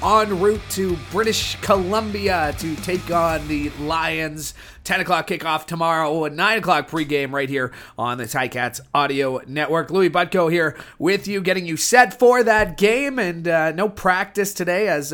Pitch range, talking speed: 145-185 Hz, 165 wpm